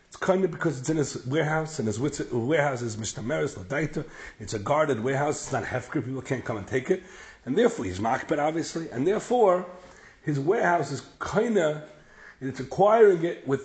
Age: 40-59